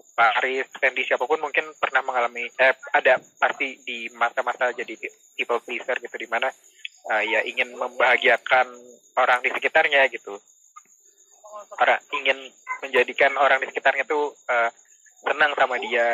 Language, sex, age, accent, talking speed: Indonesian, male, 20-39, native, 135 wpm